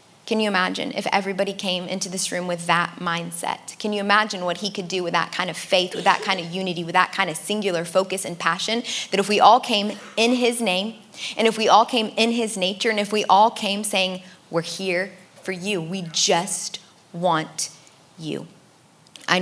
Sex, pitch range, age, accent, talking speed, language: female, 175-200 Hz, 20-39, American, 210 wpm, English